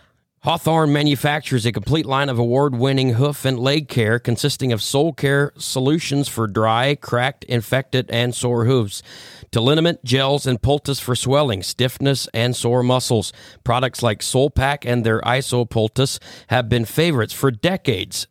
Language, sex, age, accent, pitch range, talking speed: English, male, 40-59, American, 120-140 Hz, 150 wpm